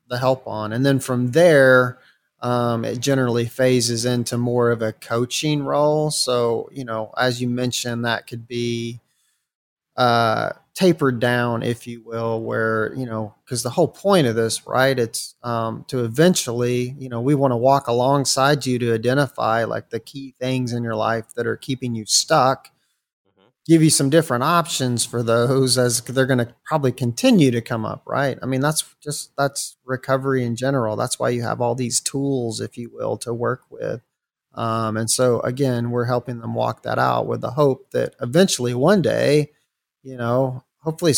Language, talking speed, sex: English, 180 wpm, male